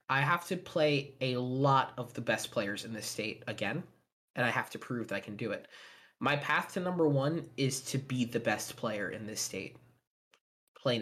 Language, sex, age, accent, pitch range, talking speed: English, male, 20-39, American, 125-150 Hz, 210 wpm